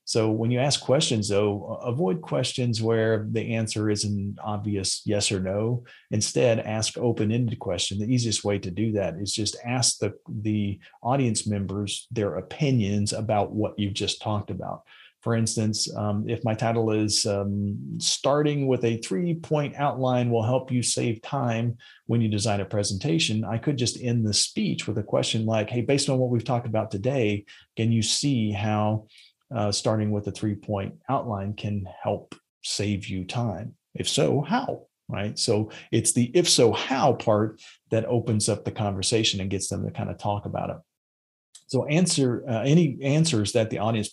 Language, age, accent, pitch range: English, 40-59, American, 105-130 Hz